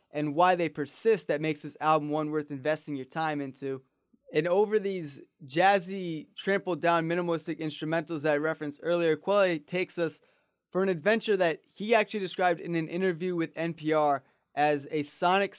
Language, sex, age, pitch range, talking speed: English, male, 20-39, 150-180 Hz, 165 wpm